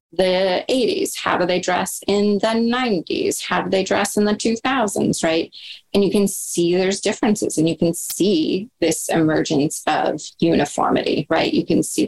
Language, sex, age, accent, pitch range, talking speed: English, female, 20-39, American, 160-195 Hz, 175 wpm